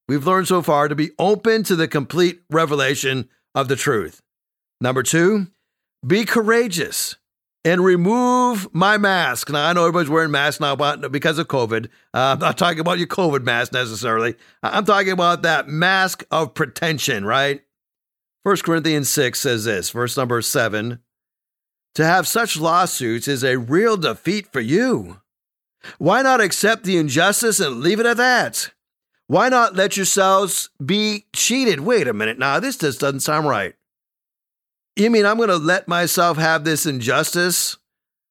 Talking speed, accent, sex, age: 160 wpm, American, male, 50-69